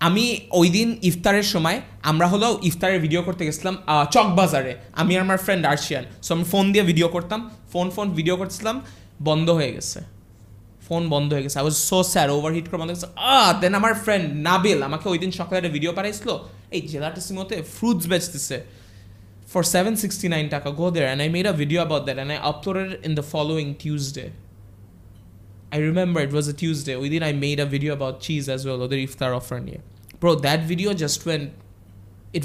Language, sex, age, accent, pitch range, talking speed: Bengali, male, 20-39, native, 140-195 Hz, 170 wpm